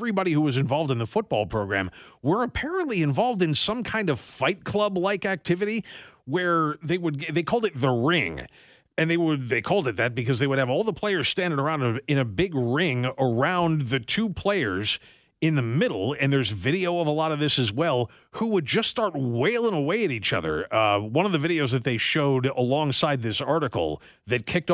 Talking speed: 210 wpm